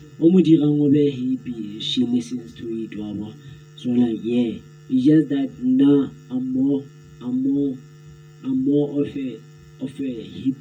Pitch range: 115-150 Hz